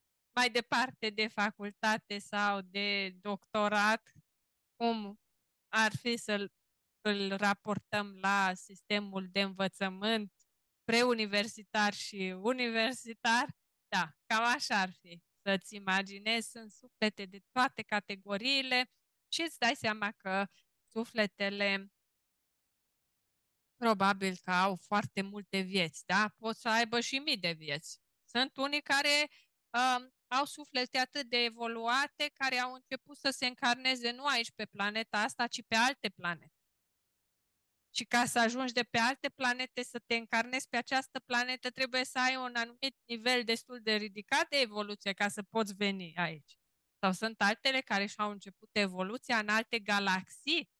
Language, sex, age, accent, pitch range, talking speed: Romanian, female, 20-39, native, 200-250 Hz, 135 wpm